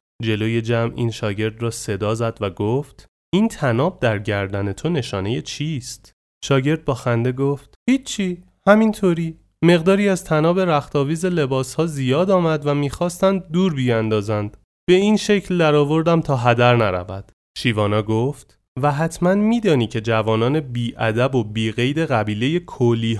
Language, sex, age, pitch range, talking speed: Persian, male, 30-49, 110-175 Hz, 135 wpm